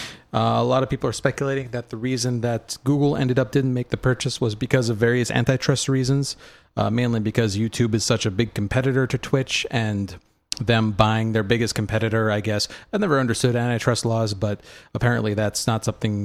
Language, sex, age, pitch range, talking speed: English, male, 40-59, 110-135 Hz, 195 wpm